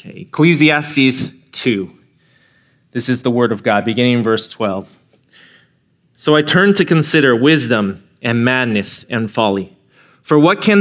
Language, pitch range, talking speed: English, 125-160 Hz, 145 wpm